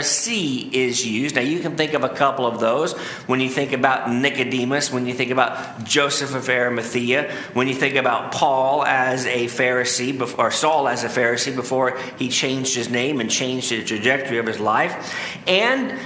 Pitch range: 130-170 Hz